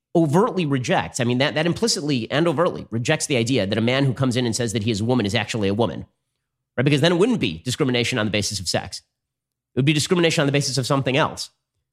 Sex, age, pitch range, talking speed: male, 30-49, 110-130 Hz, 255 wpm